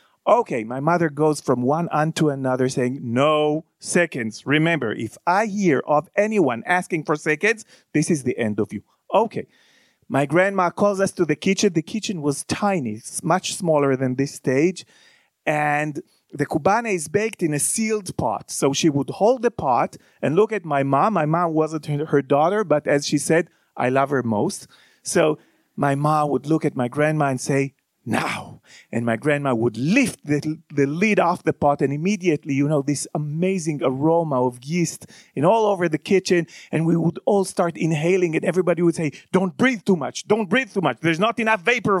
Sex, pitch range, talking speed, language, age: male, 150-195 Hz, 190 wpm, English, 40-59